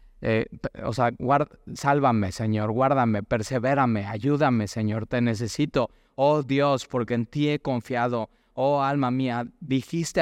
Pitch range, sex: 115-140 Hz, male